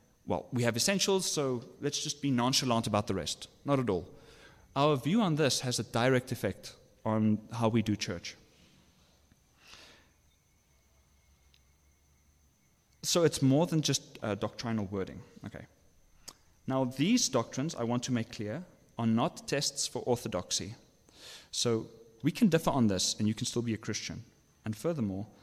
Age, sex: 30-49, male